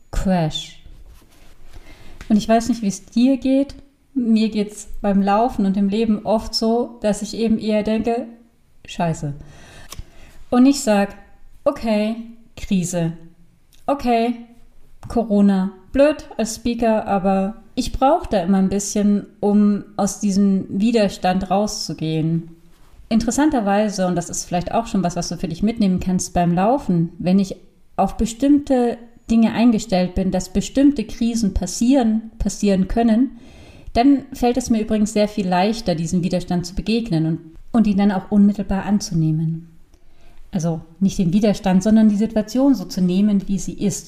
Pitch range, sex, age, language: 185-230 Hz, female, 30-49, German